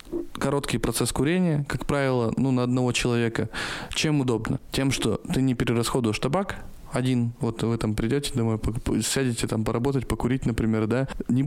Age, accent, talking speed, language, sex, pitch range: 20-39, native, 155 wpm, Russian, male, 115-140 Hz